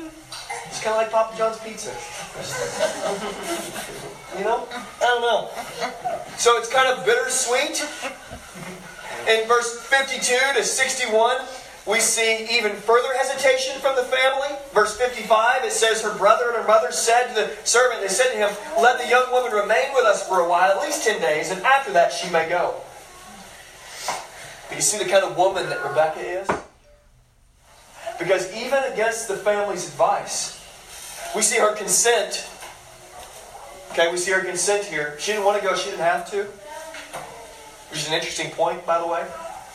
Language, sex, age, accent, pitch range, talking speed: English, male, 30-49, American, 170-245 Hz, 165 wpm